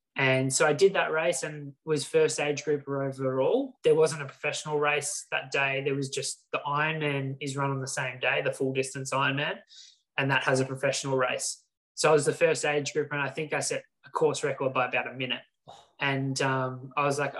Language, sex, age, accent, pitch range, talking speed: English, male, 20-39, Australian, 135-160 Hz, 220 wpm